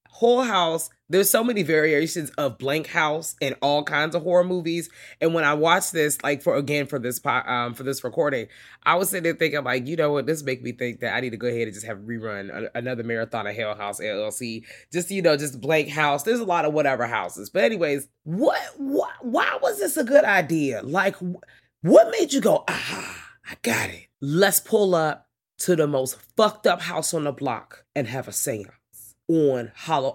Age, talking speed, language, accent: 20-39, 220 wpm, English, American